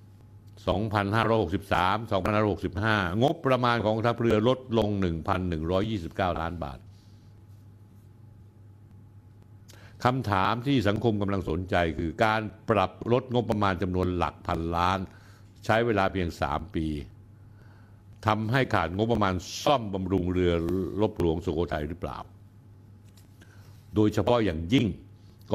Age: 60-79